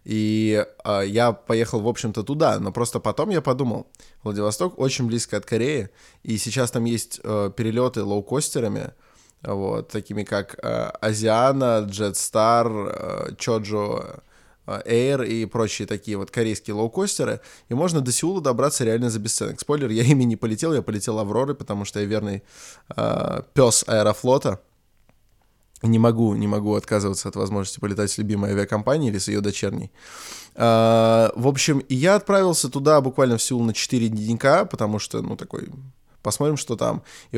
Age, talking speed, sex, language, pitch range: 20-39, 155 wpm, male, Russian, 105-125 Hz